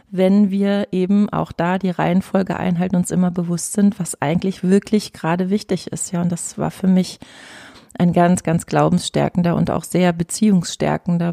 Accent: German